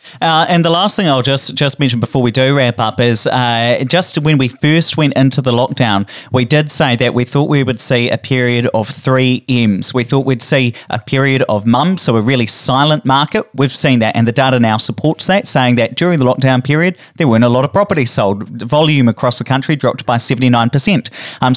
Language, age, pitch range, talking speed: English, 30-49, 115-140 Hz, 230 wpm